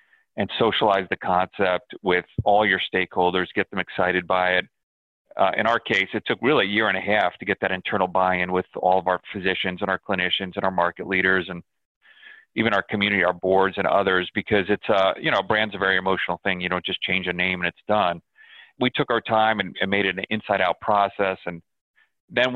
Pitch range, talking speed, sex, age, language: 90-110 Hz, 215 wpm, male, 30-49, English